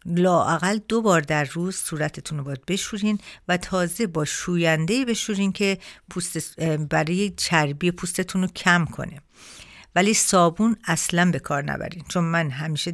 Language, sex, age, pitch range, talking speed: Persian, female, 50-69, 160-195 Hz, 145 wpm